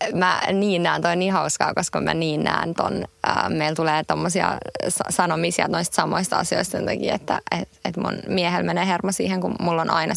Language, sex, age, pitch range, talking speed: English, female, 20-39, 170-205 Hz, 185 wpm